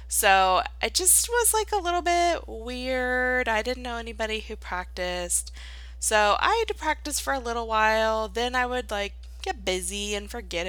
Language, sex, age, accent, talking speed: English, female, 20-39, American, 180 wpm